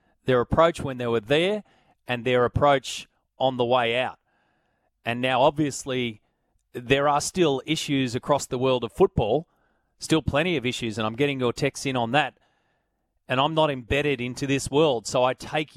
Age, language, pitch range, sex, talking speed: 30-49, English, 125-150 Hz, male, 180 wpm